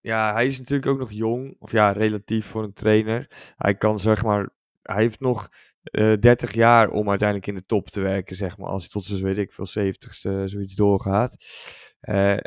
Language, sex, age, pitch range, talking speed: Dutch, male, 20-39, 105-115 Hz, 200 wpm